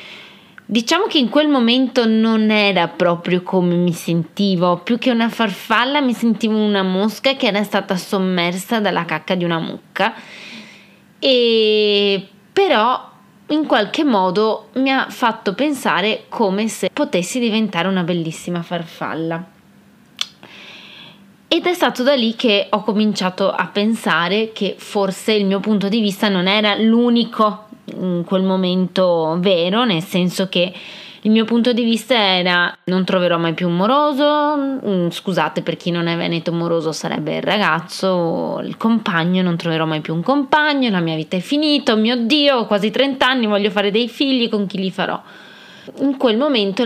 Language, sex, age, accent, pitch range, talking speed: Italian, female, 20-39, native, 180-225 Hz, 155 wpm